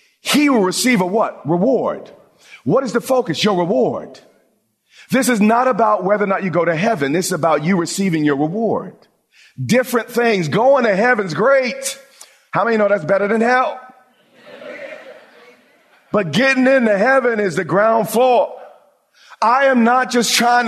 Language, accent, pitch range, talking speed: English, American, 195-250 Hz, 165 wpm